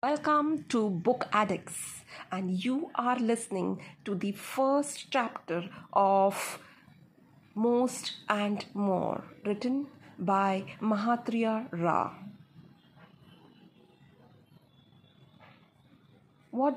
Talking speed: 75 wpm